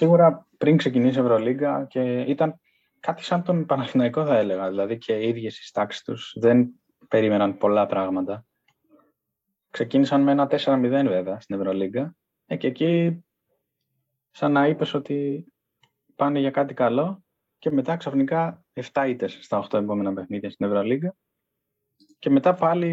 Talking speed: 140 wpm